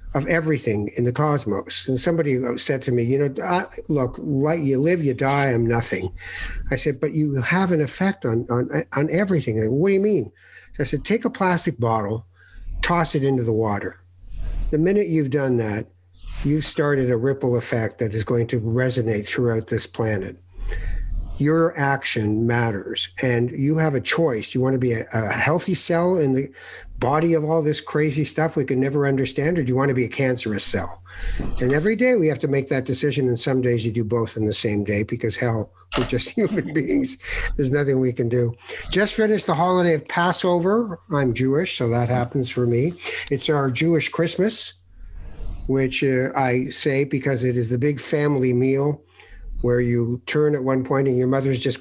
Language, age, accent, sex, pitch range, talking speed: English, 60-79, American, male, 115-155 Hz, 200 wpm